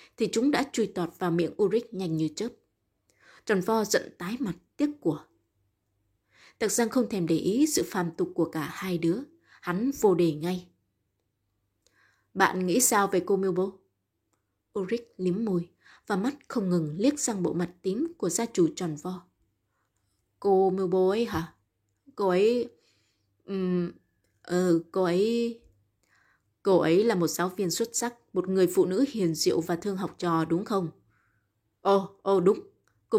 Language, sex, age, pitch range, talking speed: Vietnamese, female, 20-39, 155-205 Hz, 165 wpm